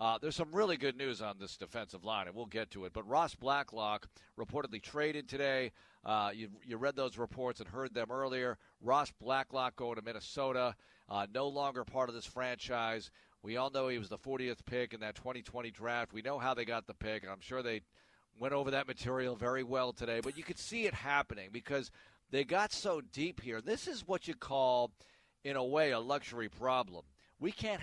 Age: 40-59